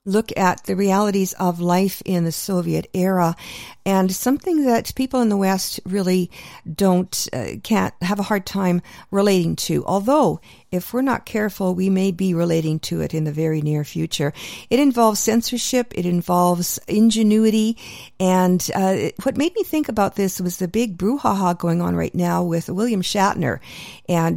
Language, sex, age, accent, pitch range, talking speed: English, female, 50-69, American, 170-200 Hz, 170 wpm